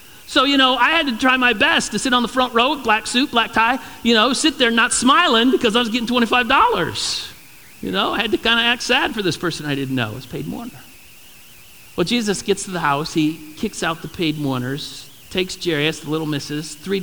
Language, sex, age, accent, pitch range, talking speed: English, male, 50-69, American, 140-220 Hz, 245 wpm